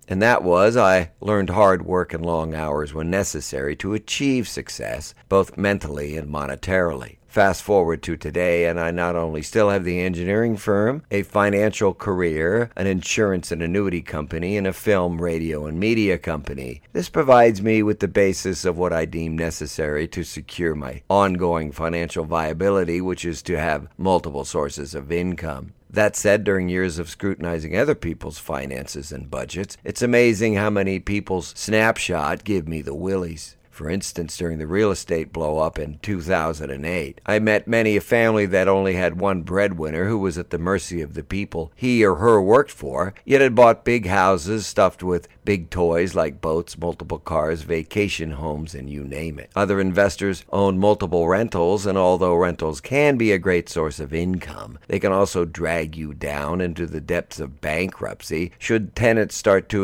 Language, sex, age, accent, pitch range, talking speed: English, male, 50-69, American, 80-100 Hz, 175 wpm